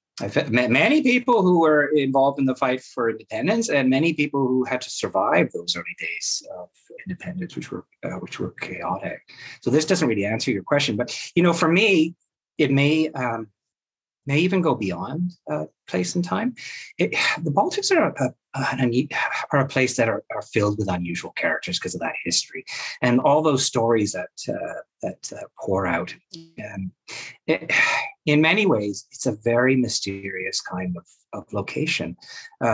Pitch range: 115-170 Hz